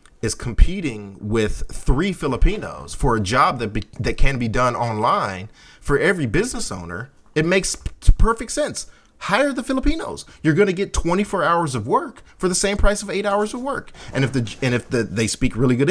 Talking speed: 195 wpm